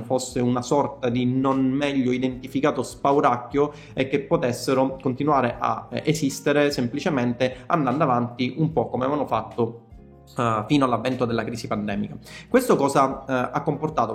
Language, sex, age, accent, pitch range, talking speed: Italian, male, 30-49, native, 125-155 Hz, 130 wpm